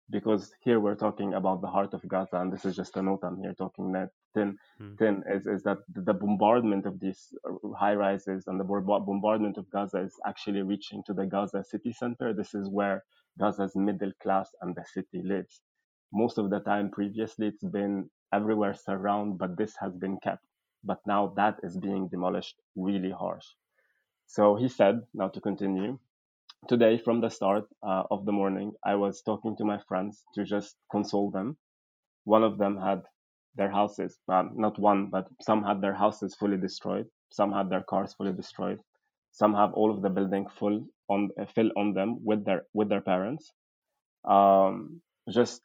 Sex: male